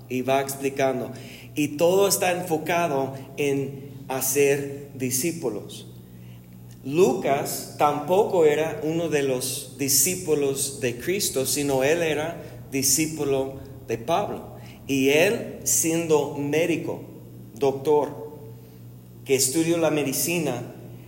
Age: 40-59